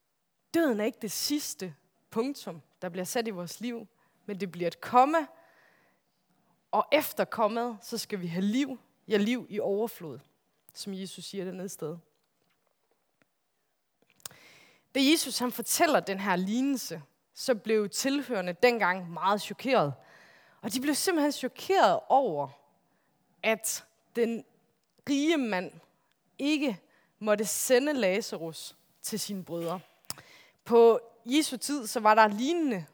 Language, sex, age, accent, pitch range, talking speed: Danish, female, 20-39, native, 185-260 Hz, 130 wpm